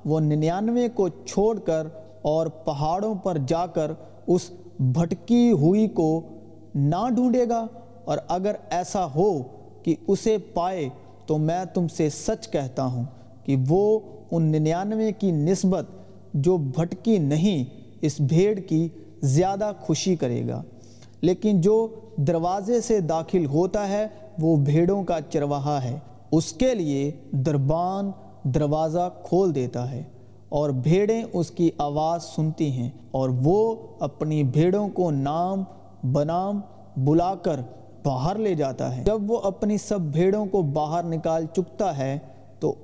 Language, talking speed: Urdu, 135 wpm